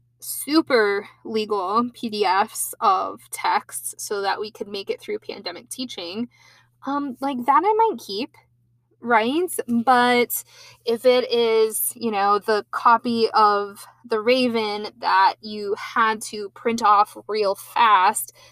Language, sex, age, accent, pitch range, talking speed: English, female, 20-39, American, 200-265 Hz, 130 wpm